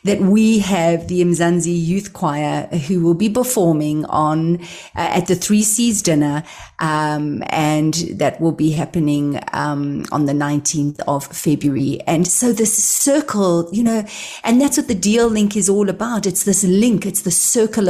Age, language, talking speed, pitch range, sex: 40-59, English, 170 wpm, 170-215 Hz, female